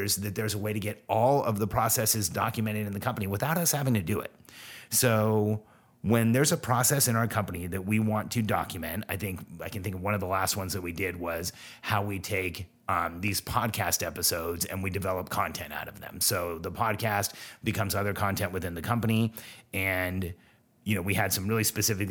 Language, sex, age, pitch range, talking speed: English, male, 30-49, 95-110 Hz, 215 wpm